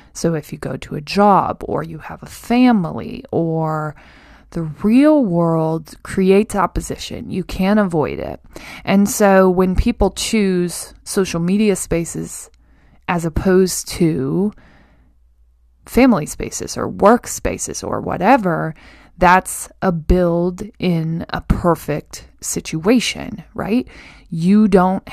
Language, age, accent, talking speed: English, 20-39, American, 120 wpm